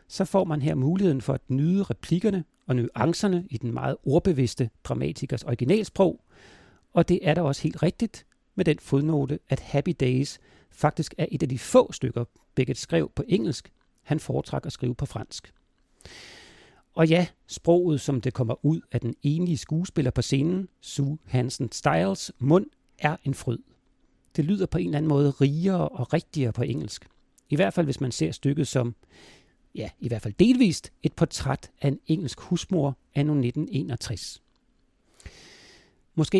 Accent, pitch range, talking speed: native, 130-170 Hz, 170 wpm